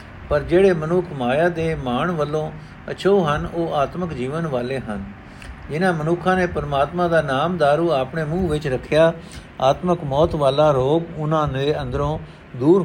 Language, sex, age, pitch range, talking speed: Punjabi, male, 60-79, 120-165 Hz, 155 wpm